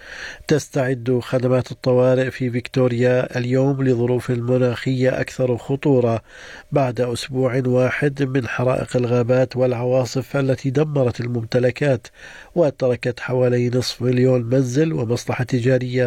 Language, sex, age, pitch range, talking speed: Arabic, male, 50-69, 120-135 Hz, 100 wpm